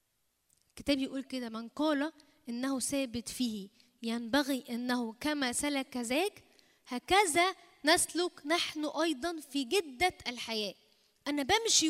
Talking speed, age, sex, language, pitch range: 115 wpm, 10-29, female, Arabic, 250-320 Hz